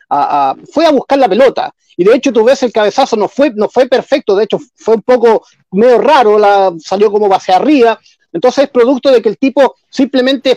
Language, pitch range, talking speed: Spanish, 190-275 Hz, 200 wpm